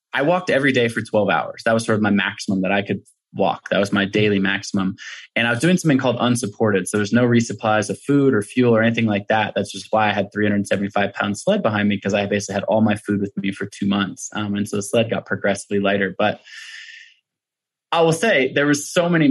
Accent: American